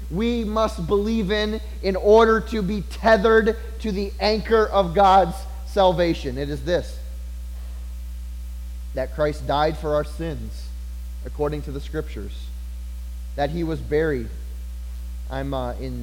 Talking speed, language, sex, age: 130 wpm, English, male, 30-49